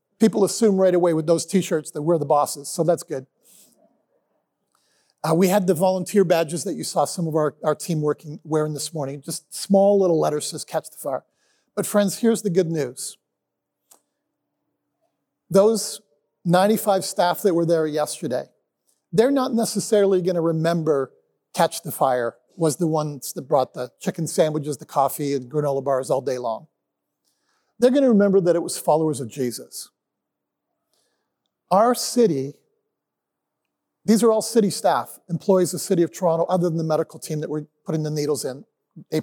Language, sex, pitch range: English, male, 155-195 Hz